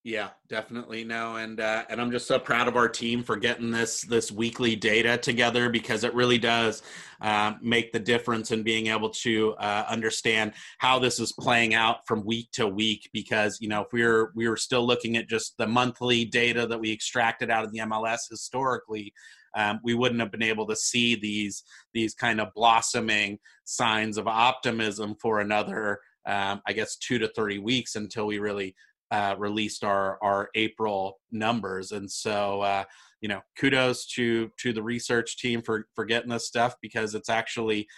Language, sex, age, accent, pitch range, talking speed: English, male, 30-49, American, 105-115 Hz, 190 wpm